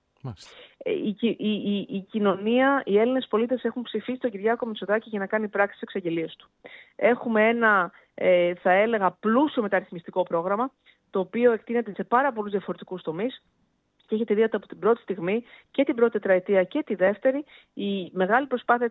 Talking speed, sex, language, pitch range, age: 170 wpm, female, Greek, 195-245 Hz, 30-49